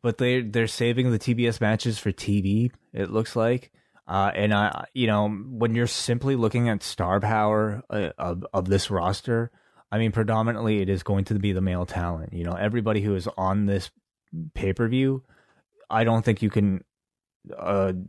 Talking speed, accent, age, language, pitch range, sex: 185 wpm, American, 20-39, English, 95-115 Hz, male